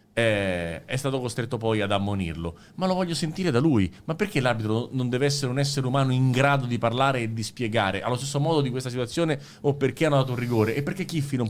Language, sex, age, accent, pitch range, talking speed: Italian, male, 30-49, native, 115-155 Hz, 240 wpm